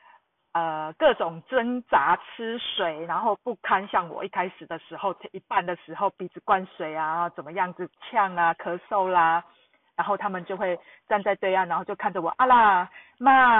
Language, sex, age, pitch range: Chinese, female, 40-59, 170-230 Hz